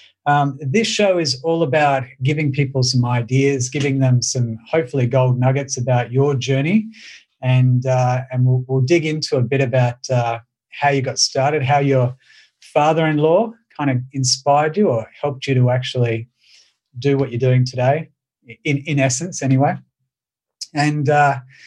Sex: male